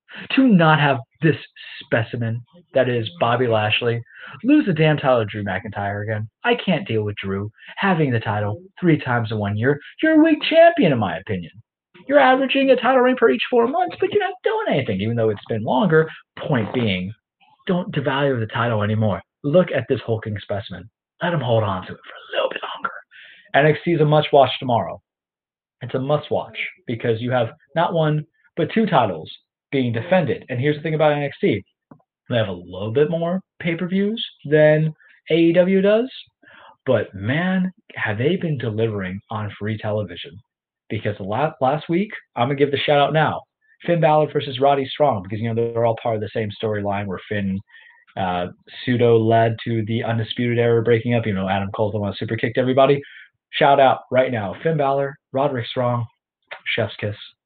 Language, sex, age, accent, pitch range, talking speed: English, male, 30-49, American, 110-165 Hz, 185 wpm